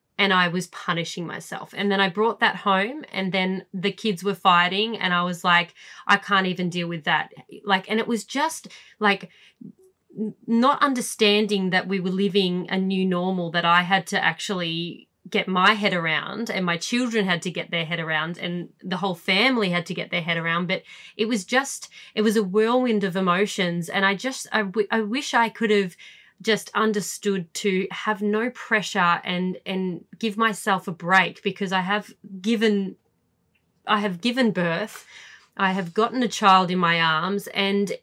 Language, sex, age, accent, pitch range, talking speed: English, female, 30-49, Australian, 180-210 Hz, 185 wpm